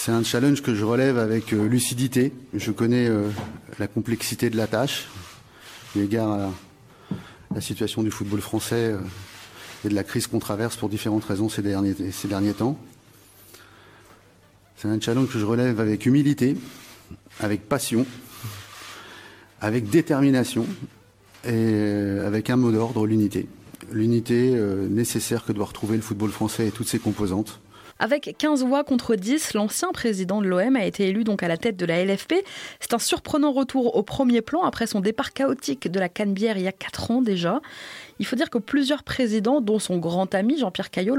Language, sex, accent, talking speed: French, male, French, 175 wpm